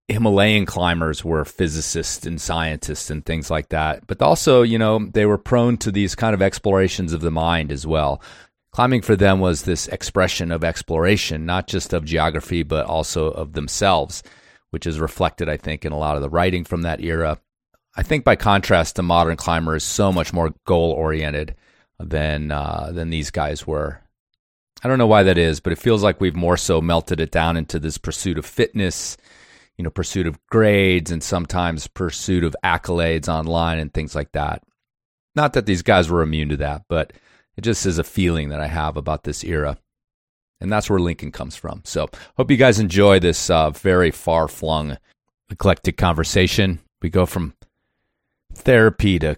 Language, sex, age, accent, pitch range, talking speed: English, male, 30-49, American, 80-95 Hz, 185 wpm